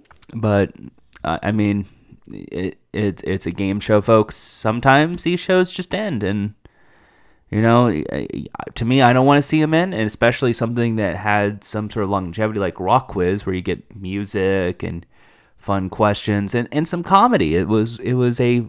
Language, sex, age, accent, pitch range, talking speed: English, male, 20-39, American, 105-145 Hz, 180 wpm